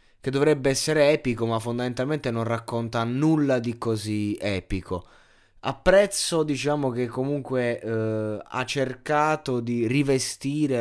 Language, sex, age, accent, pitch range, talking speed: Italian, male, 20-39, native, 100-125 Hz, 115 wpm